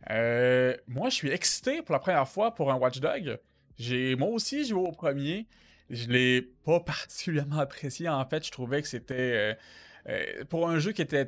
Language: French